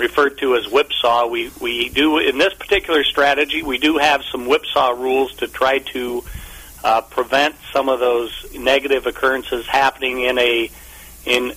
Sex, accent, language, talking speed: male, American, English, 160 wpm